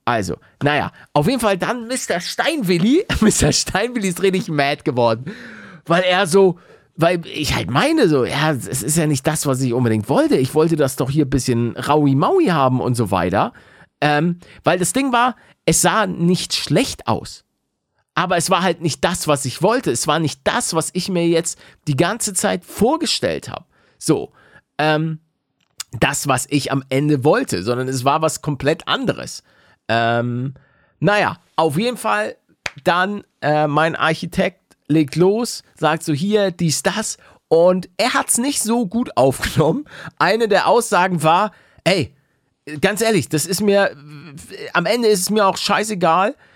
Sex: male